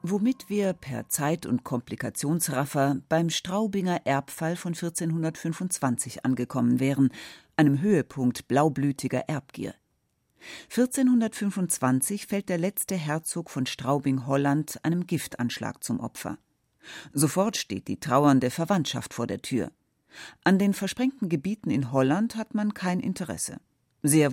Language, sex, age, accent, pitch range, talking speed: German, female, 40-59, German, 140-195 Hz, 115 wpm